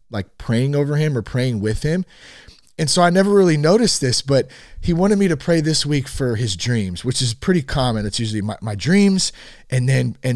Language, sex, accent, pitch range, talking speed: English, male, American, 110-155 Hz, 220 wpm